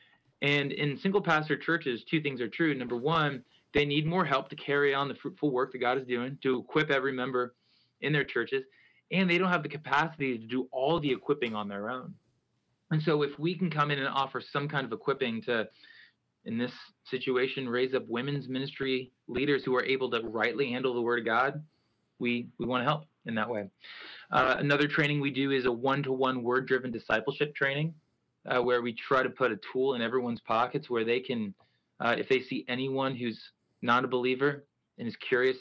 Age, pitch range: 20-39, 125-145 Hz